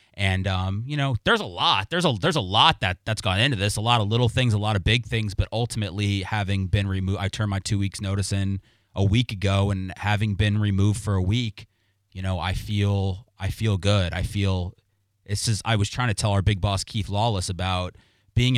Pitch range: 95-115 Hz